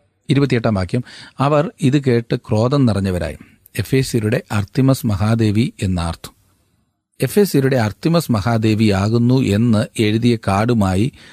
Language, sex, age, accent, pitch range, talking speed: Malayalam, male, 40-59, native, 105-130 Hz, 95 wpm